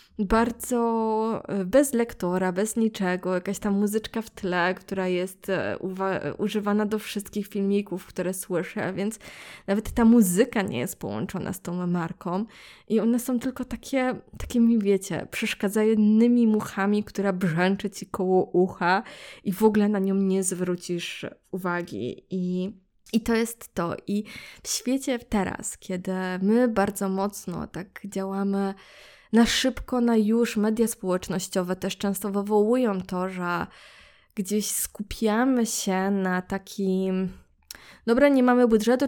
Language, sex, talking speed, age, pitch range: Polish, female, 135 wpm, 20-39, 190-220 Hz